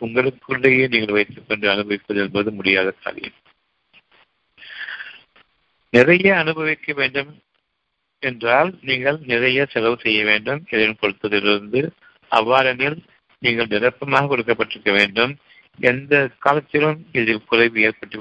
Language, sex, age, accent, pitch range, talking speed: Tamil, male, 60-79, native, 110-135 Hz, 65 wpm